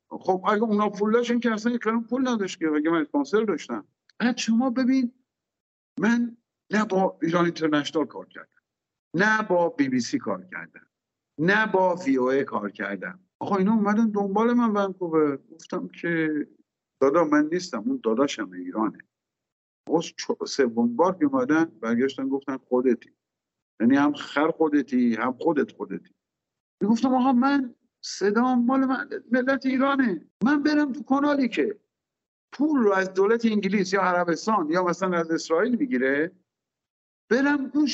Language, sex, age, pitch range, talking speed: Persian, male, 50-69, 170-240 Hz, 150 wpm